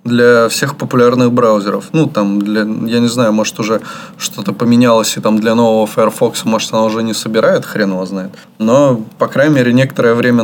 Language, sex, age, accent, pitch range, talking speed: Russian, male, 20-39, native, 105-125 Hz, 190 wpm